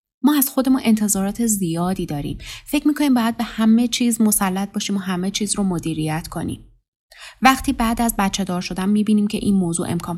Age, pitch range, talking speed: 20-39, 175-235 Hz, 190 wpm